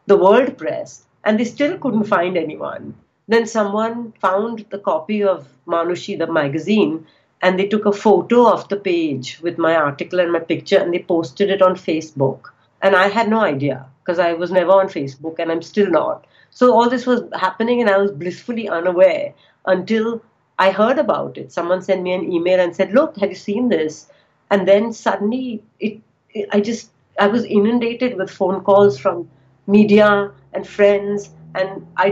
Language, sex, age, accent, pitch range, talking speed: English, female, 60-79, Indian, 165-215 Hz, 185 wpm